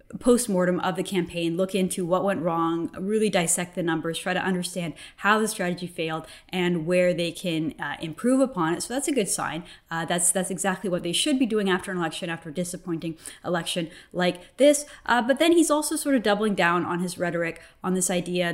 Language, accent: English, American